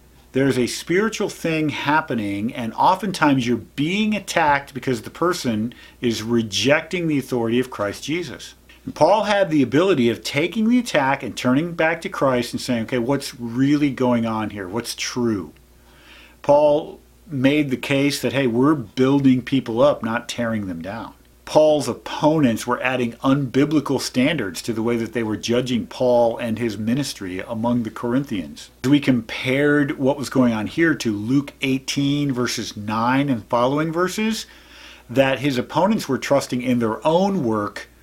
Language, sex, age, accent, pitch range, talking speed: English, male, 50-69, American, 115-150 Hz, 160 wpm